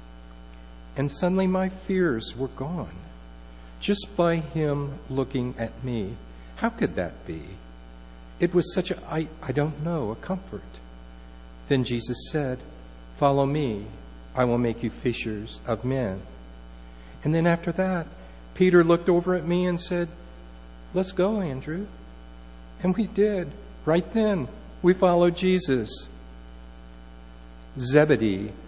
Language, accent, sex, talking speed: English, American, male, 130 wpm